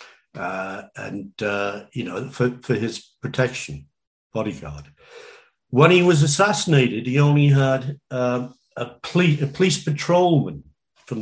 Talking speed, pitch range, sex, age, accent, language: 125 wpm, 120-145 Hz, male, 50-69, British, English